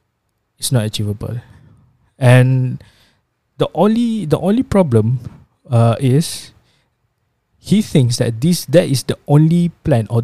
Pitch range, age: 120-160 Hz, 20-39